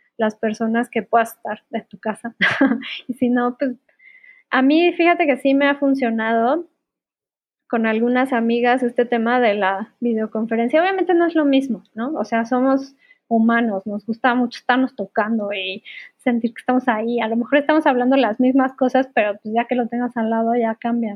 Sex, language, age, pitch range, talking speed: female, Spanish, 10-29, 225-275 Hz, 185 wpm